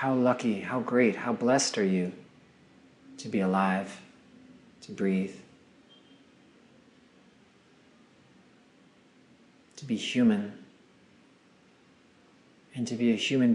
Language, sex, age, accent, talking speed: English, male, 40-59, American, 95 wpm